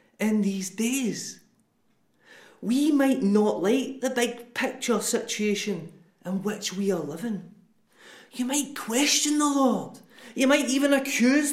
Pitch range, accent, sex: 185-245 Hz, British, male